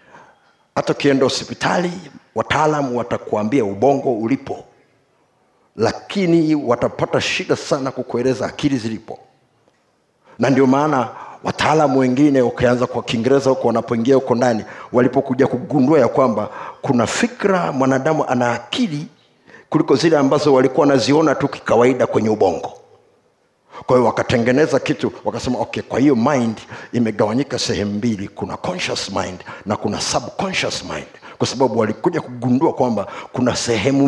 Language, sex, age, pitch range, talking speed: Swahili, male, 50-69, 120-165 Hz, 115 wpm